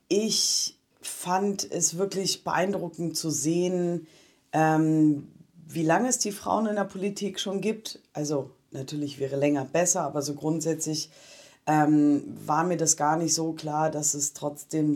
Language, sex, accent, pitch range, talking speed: German, female, German, 145-180 Hz, 150 wpm